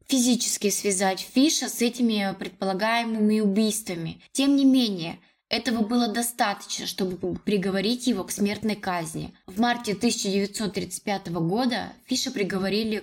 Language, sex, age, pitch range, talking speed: Russian, female, 20-39, 190-235 Hz, 115 wpm